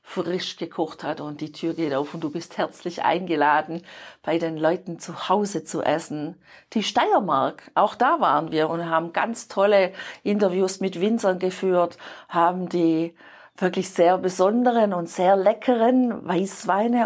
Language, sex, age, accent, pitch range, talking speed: German, female, 50-69, German, 170-210 Hz, 150 wpm